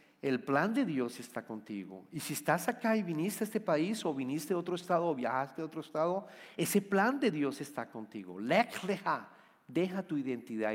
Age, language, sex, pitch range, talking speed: 40-59, Spanish, male, 110-150 Hz, 195 wpm